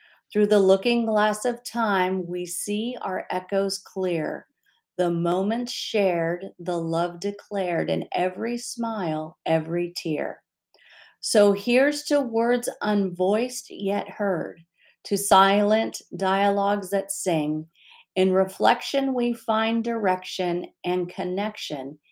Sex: female